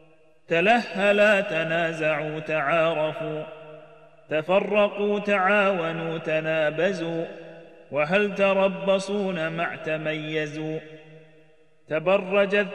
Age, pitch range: 30-49, 155-195 Hz